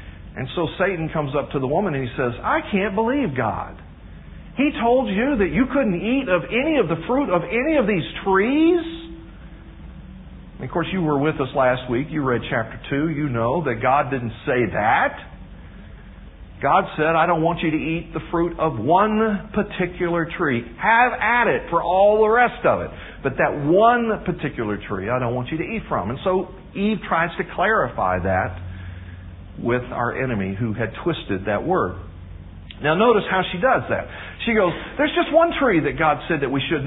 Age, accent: 50-69, American